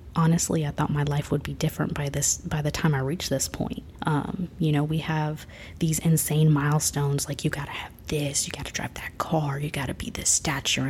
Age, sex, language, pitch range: 20-39, female, English, 145-170 Hz